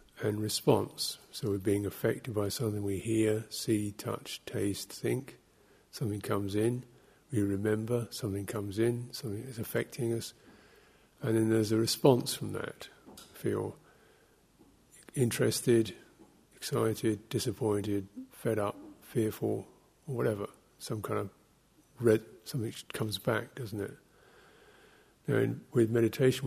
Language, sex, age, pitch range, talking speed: English, male, 50-69, 105-120 Hz, 120 wpm